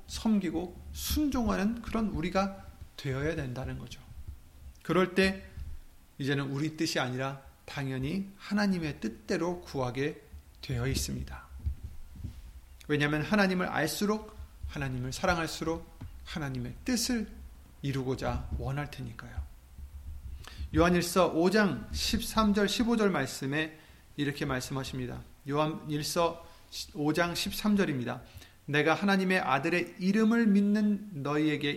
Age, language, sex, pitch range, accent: 30-49, Korean, male, 120-190 Hz, native